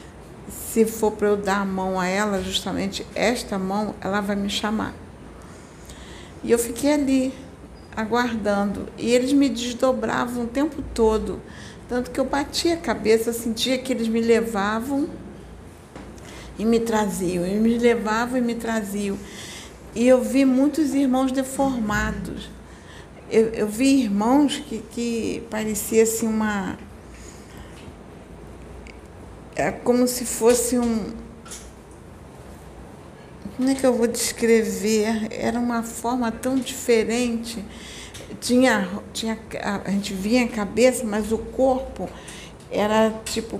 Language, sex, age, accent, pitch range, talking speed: Portuguese, female, 60-79, Brazilian, 210-245 Hz, 125 wpm